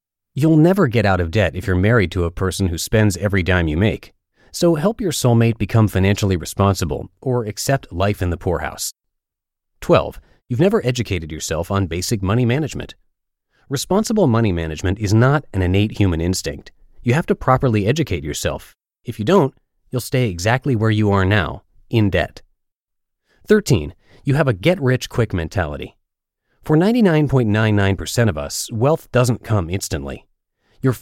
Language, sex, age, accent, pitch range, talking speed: English, male, 30-49, American, 95-130 Hz, 160 wpm